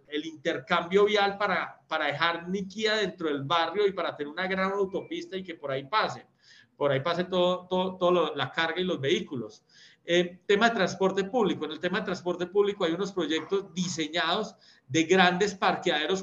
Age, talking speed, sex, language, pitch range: 40-59, 185 wpm, male, Spanish, 145-185 Hz